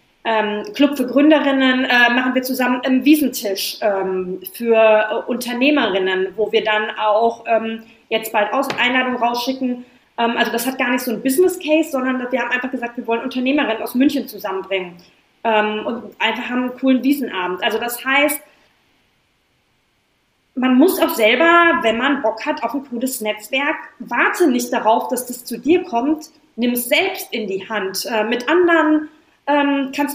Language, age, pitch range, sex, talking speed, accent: German, 20-39, 225-285 Hz, female, 170 wpm, German